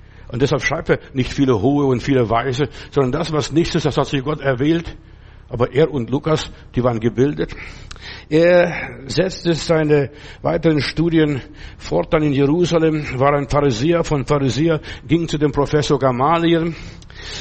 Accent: German